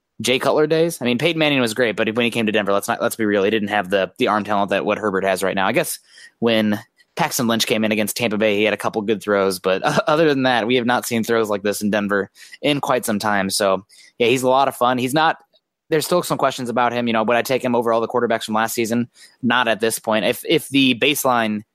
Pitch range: 100-120 Hz